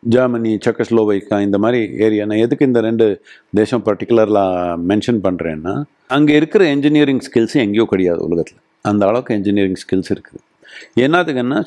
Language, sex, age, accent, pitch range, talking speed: Tamil, male, 50-69, native, 115-155 Hz, 135 wpm